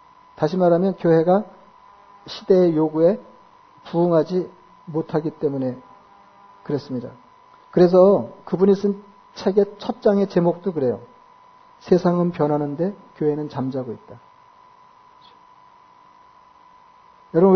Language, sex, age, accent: Korean, male, 40-59, native